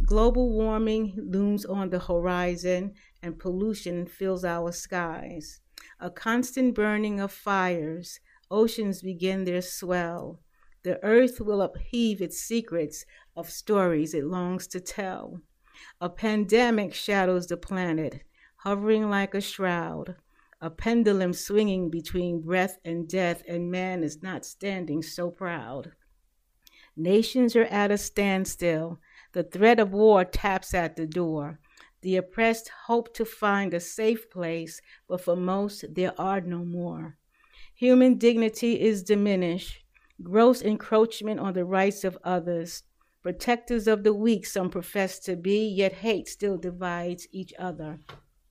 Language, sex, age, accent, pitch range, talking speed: English, female, 50-69, American, 175-215 Hz, 135 wpm